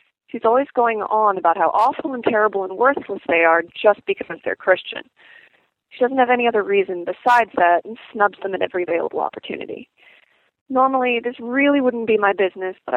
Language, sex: English, female